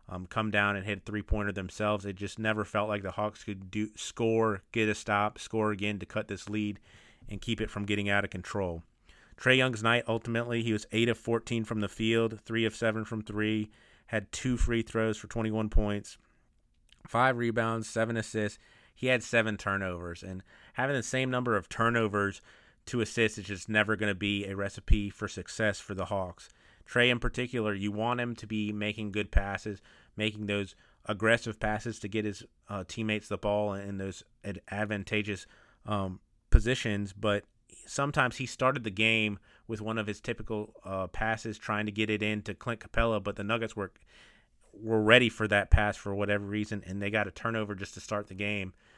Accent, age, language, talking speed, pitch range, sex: American, 30-49, English, 190 wpm, 100-110 Hz, male